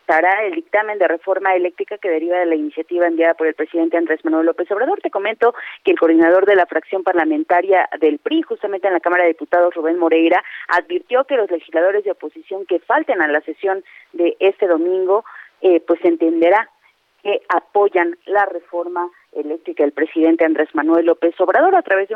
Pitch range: 165-200 Hz